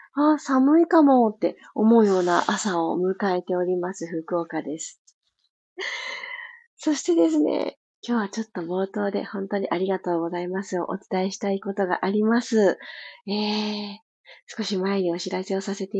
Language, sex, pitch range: Japanese, female, 190-255 Hz